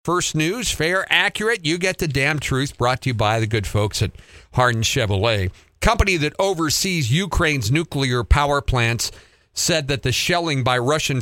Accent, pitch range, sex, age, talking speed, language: American, 100-140 Hz, male, 50-69, 170 wpm, English